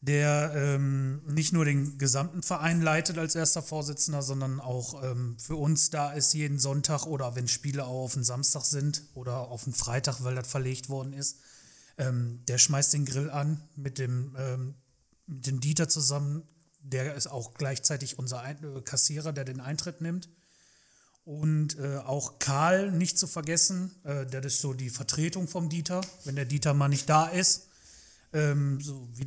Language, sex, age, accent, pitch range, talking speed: German, male, 30-49, German, 130-155 Hz, 175 wpm